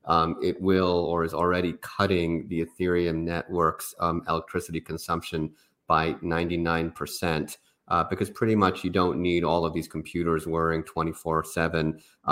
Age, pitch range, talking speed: 30-49, 80-90 Hz, 135 wpm